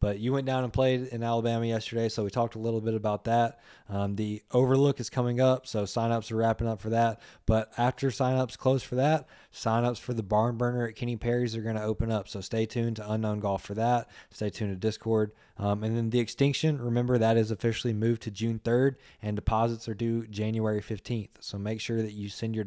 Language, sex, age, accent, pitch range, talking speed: English, male, 20-39, American, 110-125 Hz, 230 wpm